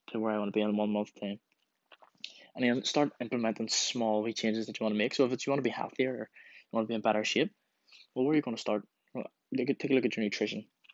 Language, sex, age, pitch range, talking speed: English, male, 10-29, 105-125 Hz, 285 wpm